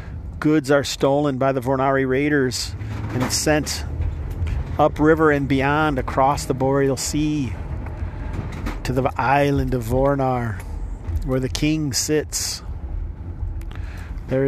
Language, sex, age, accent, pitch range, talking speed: English, male, 50-69, American, 90-145 Hz, 110 wpm